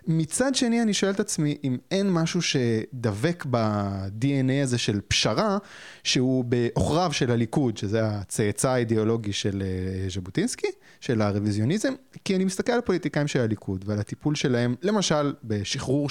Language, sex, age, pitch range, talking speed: Hebrew, male, 20-39, 115-170 Hz, 140 wpm